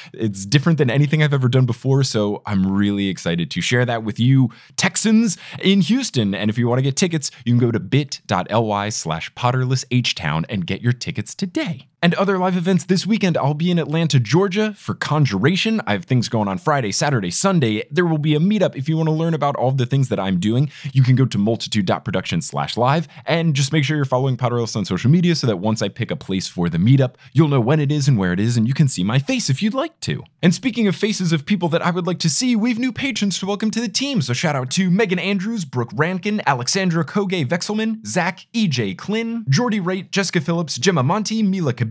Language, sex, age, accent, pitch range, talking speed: English, male, 20-39, American, 130-190 Hz, 235 wpm